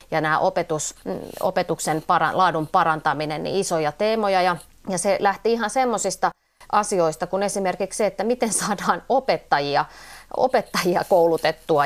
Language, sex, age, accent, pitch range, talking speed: Finnish, female, 30-49, native, 165-205 Hz, 120 wpm